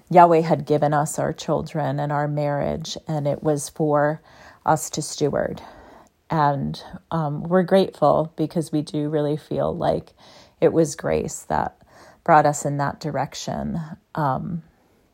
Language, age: English, 40-59